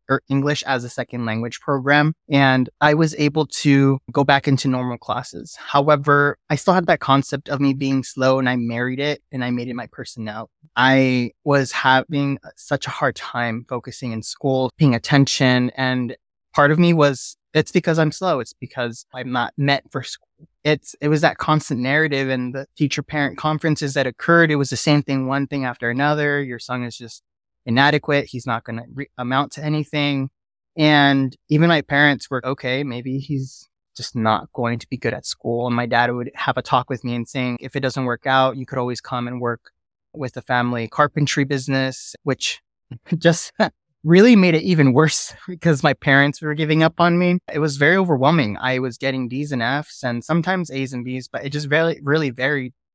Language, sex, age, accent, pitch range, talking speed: English, male, 20-39, American, 125-150 Hz, 200 wpm